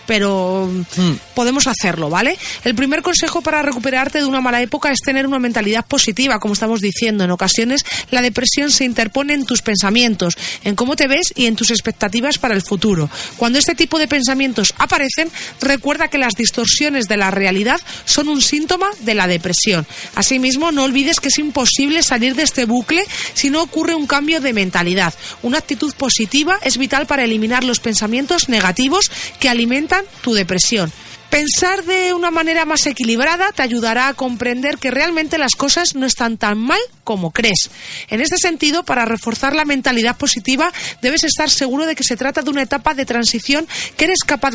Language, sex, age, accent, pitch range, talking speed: Spanish, female, 40-59, Spanish, 230-300 Hz, 180 wpm